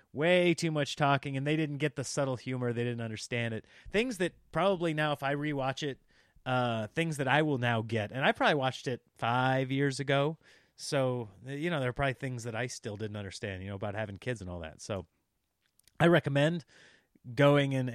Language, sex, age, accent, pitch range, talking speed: English, male, 30-49, American, 125-160 Hz, 210 wpm